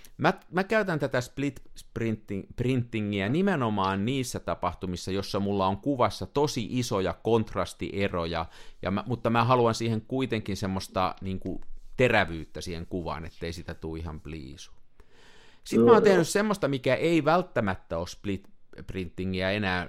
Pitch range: 90-125 Hz